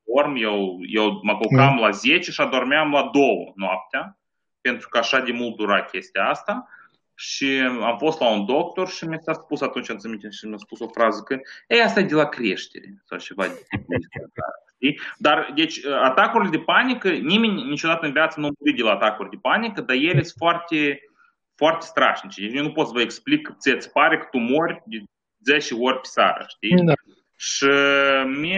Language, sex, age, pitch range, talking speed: Romanian, male, 30-49, 105-155 Hz, 175 wpm